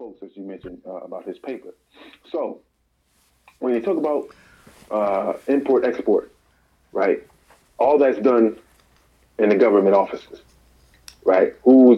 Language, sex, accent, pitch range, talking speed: English, male, American, 105-140 Hz, 130 wpm